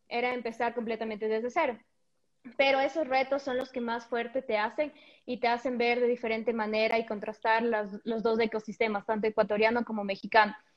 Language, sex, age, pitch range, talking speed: Spanish, female, 20-39, 220-245 Hz, 180 wpm